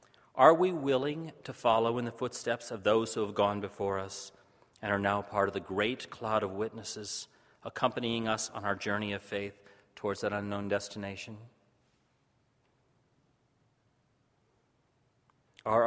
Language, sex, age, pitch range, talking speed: English, male, 40-59, 100-125 Hz, 140 wpm